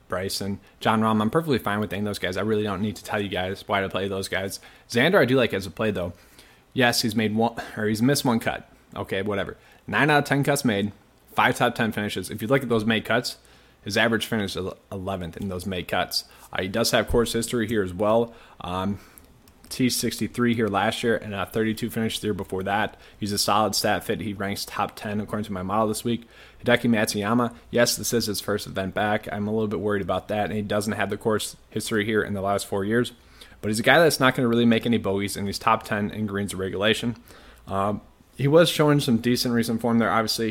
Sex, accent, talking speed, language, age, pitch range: male, American, 245 wpm, English, 20-39, 100-115 Hz